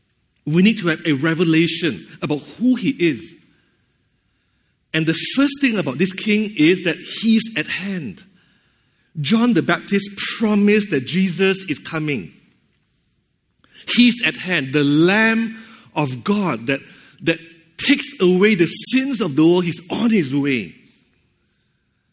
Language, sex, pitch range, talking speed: English, male, 165-225 Hz, 135 wpm